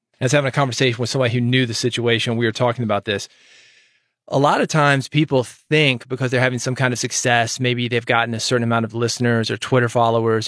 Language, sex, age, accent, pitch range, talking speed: English, male, 30-49, American, 120-140 Hz, 225 wpm